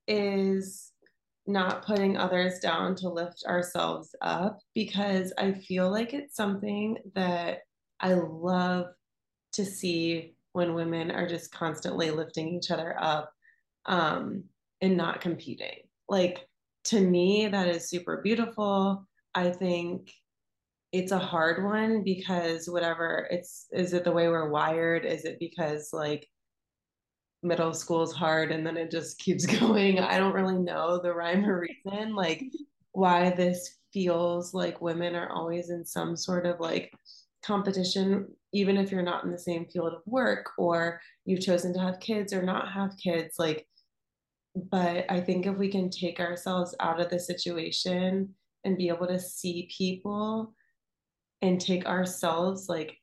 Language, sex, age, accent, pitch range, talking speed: English, female, 20-39, American, 170-195 Hz, 150 wpm